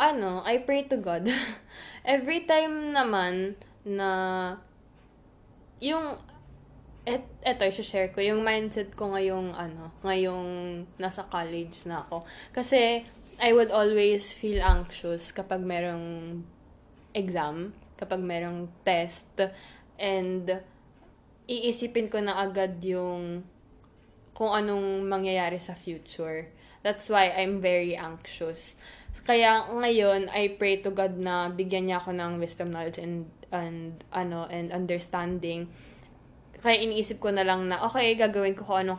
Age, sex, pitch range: 10-29, female, 175-210 Hz